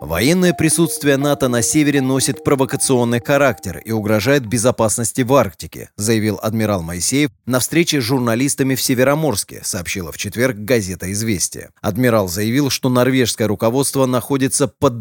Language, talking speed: Russian, 135 wpm